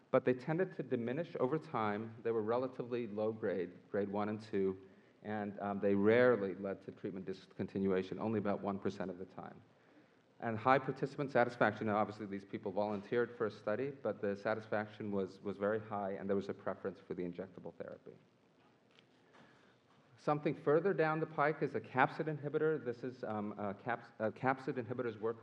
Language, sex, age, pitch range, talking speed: English, male, 40-59, 100-125 Hz, 180 wpm